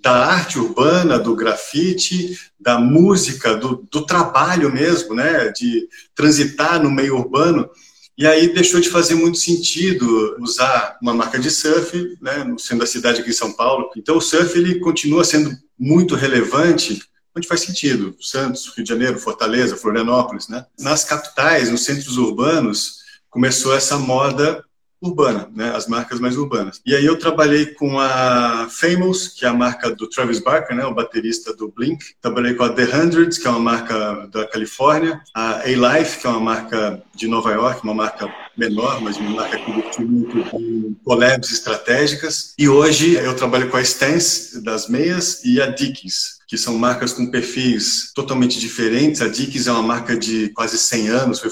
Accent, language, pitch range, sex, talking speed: Brazilian, Portuguese, 115-160 Hz, male, 175 wpm